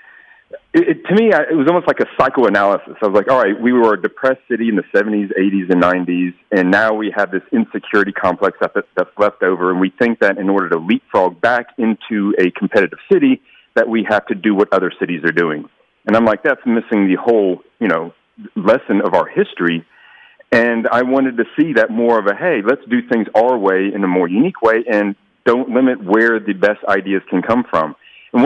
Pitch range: 100-125 Hz